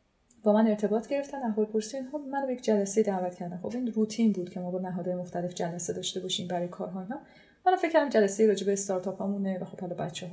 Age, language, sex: 30-49, Persian, female